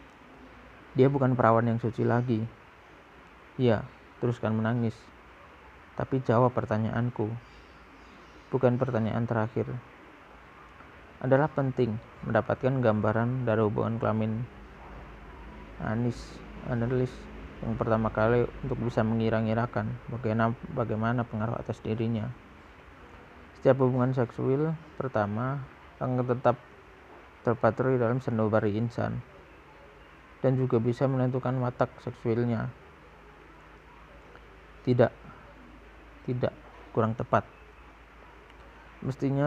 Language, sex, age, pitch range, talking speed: Indonesian, male, 20-39, 110-130 Hz, 85 wpm